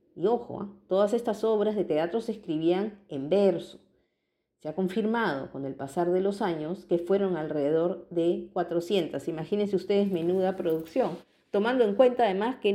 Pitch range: 170-215 Hz